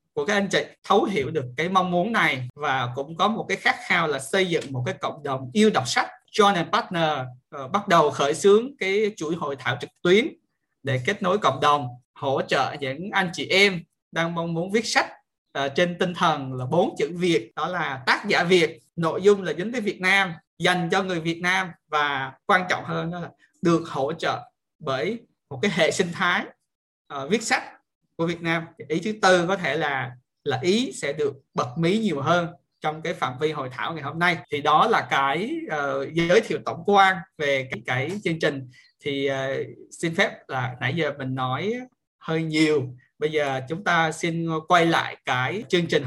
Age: 20-39